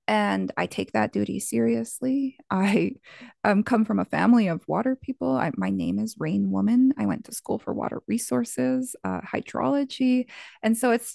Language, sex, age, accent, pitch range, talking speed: English, female, 20-39, American, 155-245 Hz, 170 wpm